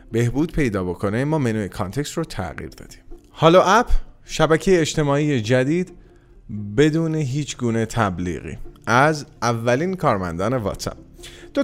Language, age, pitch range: Persian, 30-49, 105-155 Hz